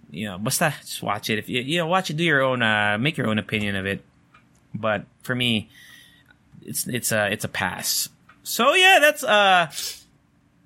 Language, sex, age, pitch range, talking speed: English, male, 20-39, 110-170 Hz, 190 wpm